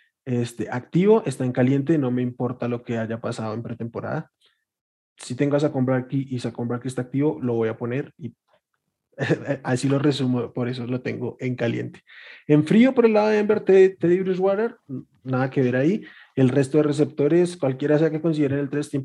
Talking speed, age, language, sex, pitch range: 200 wpm, 20-39, Spanish, male, 125-150 Hz